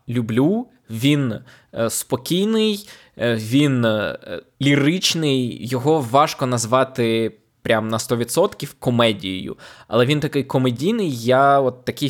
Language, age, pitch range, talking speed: Ukrainian, 20-39, 115-145 Hz, 110 wpm